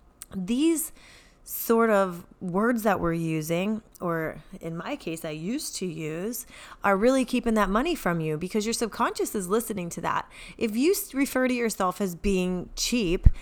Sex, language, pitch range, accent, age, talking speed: female, English, 180-235 Hz, American, 30-49, 165 wpm